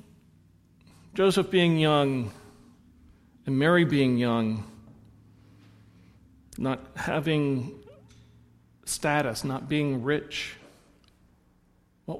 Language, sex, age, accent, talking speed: English, male, 50-69, American, 70 wpm